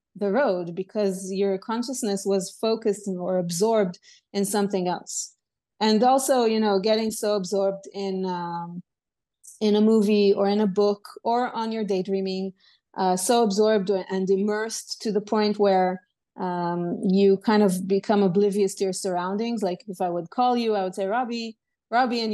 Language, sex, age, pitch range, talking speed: English, female, 30-49, 190-220 Hz, 165 wpm